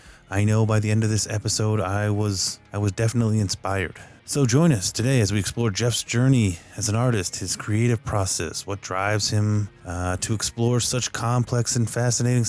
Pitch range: 95-115 Hz